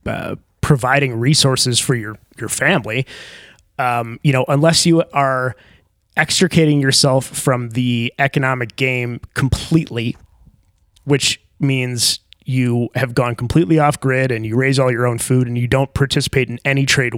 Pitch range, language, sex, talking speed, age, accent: 120-140 Hz, English, male, 145 wpm, 30-49, American